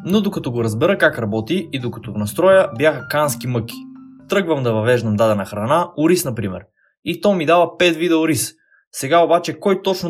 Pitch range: 120-175 Hz